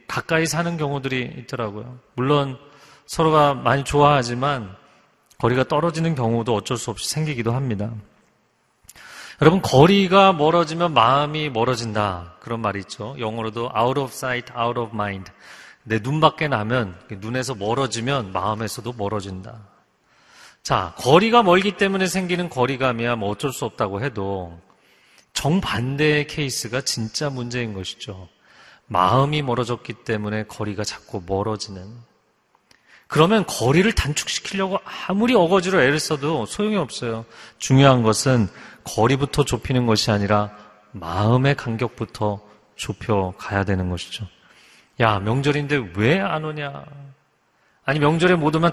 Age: 40-59